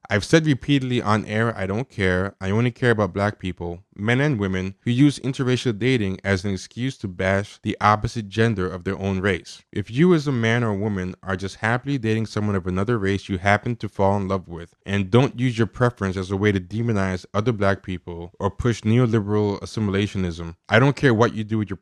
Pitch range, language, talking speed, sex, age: 95-125 Hz, English, 220 wpm, male, 20-39